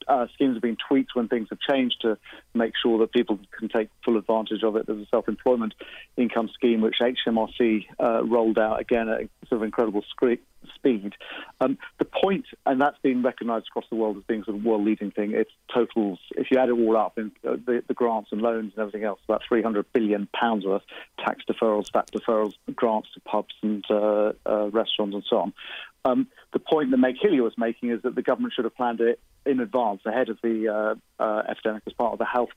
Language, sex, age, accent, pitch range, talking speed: English, male, 40-59, British, 110-120 Hz, 220 wpm